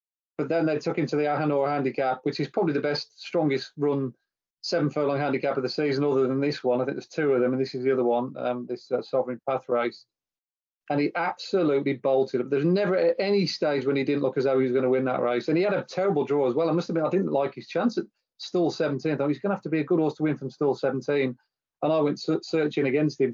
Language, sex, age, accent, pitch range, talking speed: English, male, 30-49, British, 130-150 Hz, 270 wpm